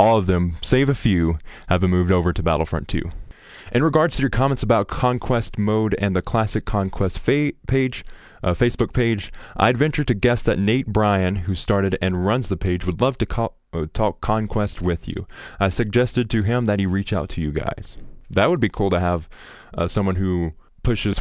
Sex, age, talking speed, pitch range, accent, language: male, 20-39, 205 wpm, 90-115 Hz, American, English